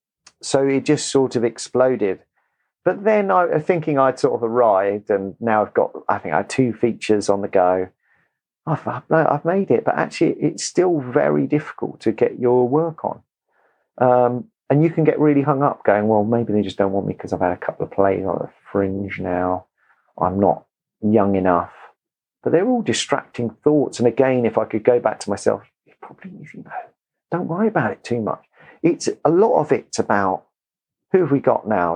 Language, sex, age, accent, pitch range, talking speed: English, male, 40-59, British, 100-150 Hz, 200 wpm